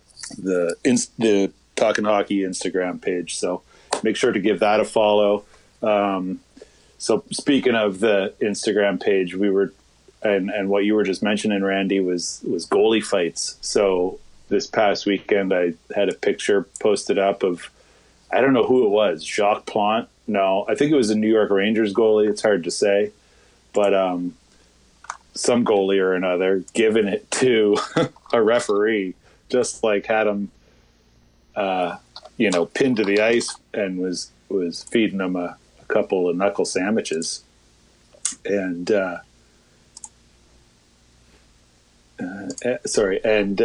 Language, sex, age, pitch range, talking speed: English, male, 30-49, 90-110 Hz, 145 wpm